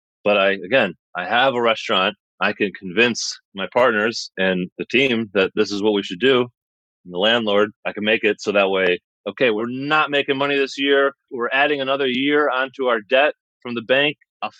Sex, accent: male, American